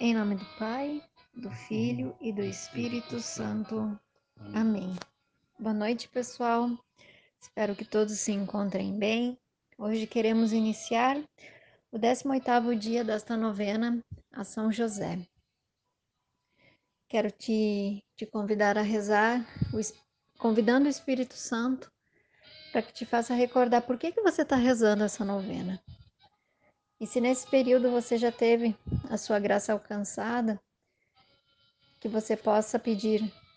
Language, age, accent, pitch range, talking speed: Portuguese, 10-29, Brazilian, 210-250 Hz, 125 wpm